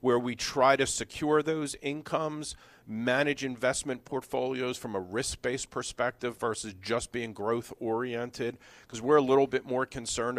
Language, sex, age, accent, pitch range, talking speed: English, male, 50-69, American, 110-135 Hz, 145 wpm